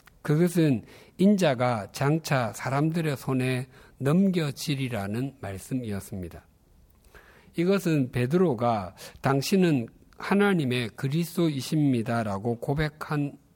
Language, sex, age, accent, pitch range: Korean, male, 60-79, native, 115-160 Hz